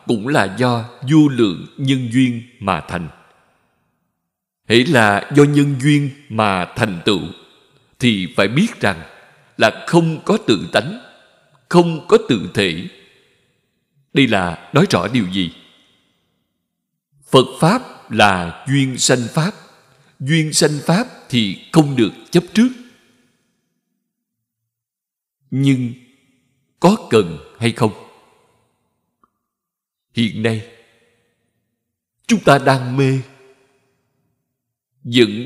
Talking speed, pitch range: 105 wpm, 115-160 Hz